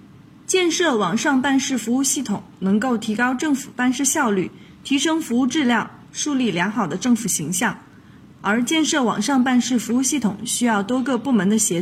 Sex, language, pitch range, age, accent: female, Chinese, 210-280 Hz, 20-39, native